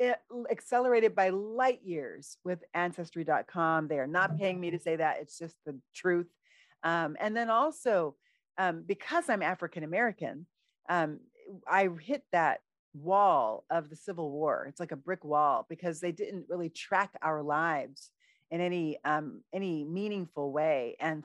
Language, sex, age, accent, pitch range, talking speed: English, female, 40-59, American, 155-195 Hz, 150 wpm